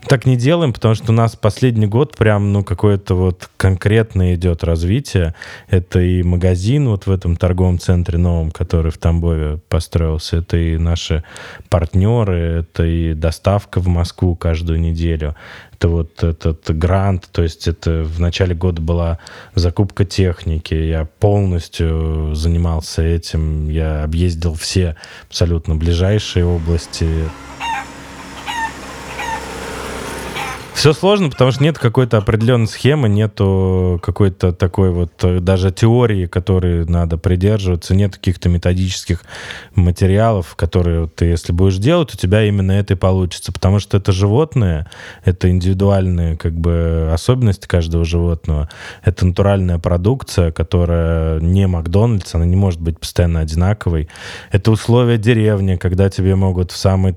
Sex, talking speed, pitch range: male, 130 wpm, 85-100 Hz